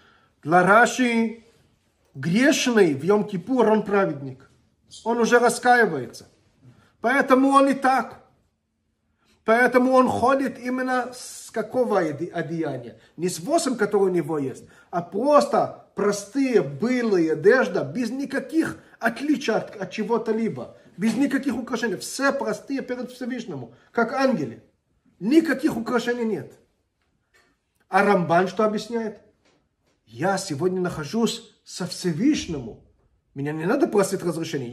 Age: 40-59